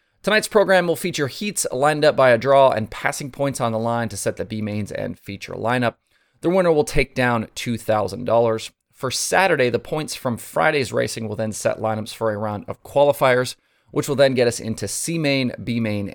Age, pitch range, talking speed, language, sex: 30-49, 110-150 Hz, 195 wpm, English, male